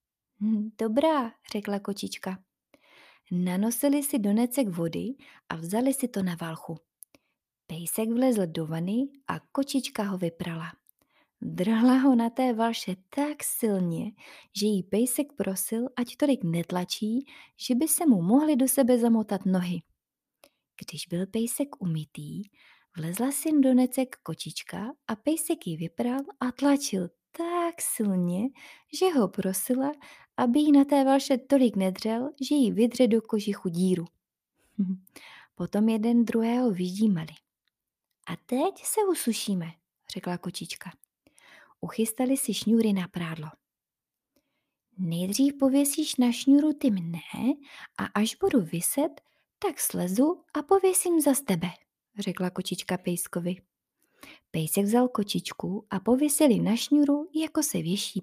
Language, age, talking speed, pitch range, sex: Czech, 20-39, 125 wpm, 185-275 Hz, female